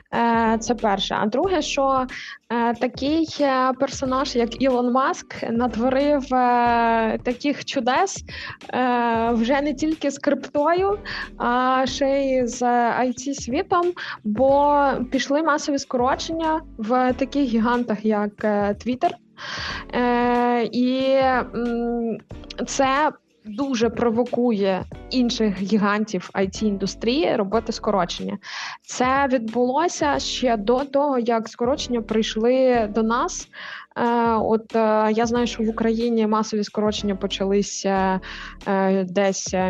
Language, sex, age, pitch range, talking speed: Ukrainian, female, 20-39, 220-265 Hz, 90 wpm